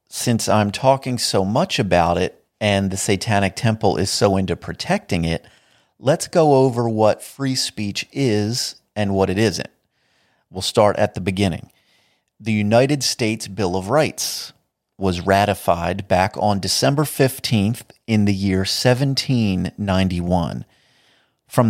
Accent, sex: American, male